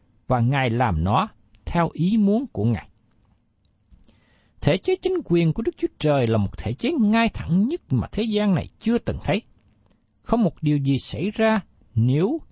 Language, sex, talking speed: Vietnamese, male, 180 wpm